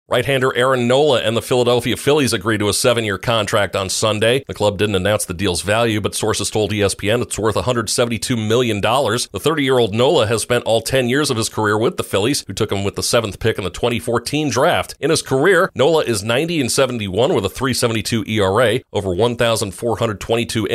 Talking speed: 195 wpm